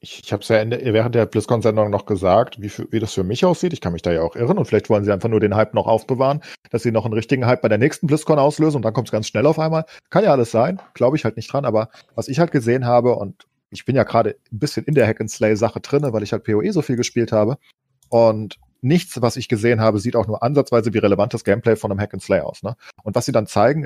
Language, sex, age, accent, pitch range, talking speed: German, male, 40-59, German, 115-150 Hz, 270 wpm